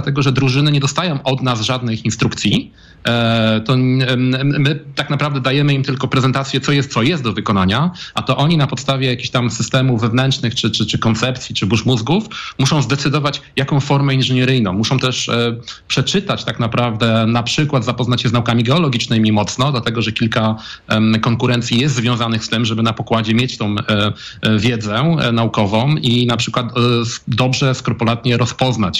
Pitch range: 110-135 Hz